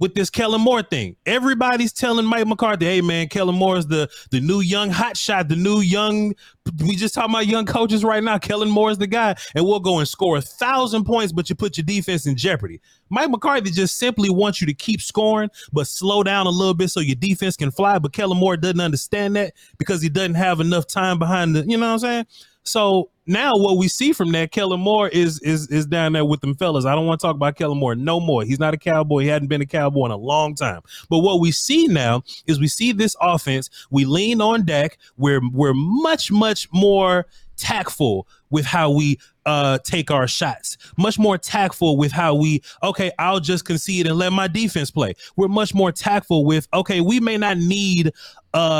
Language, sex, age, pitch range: English, male, 30-49, 150-200 Hz